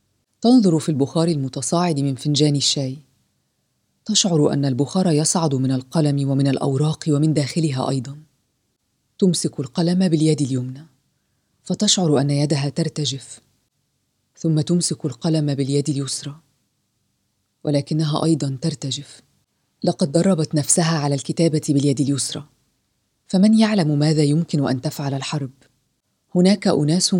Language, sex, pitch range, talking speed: Arabic, female, 140-170 Hz, 110 wpm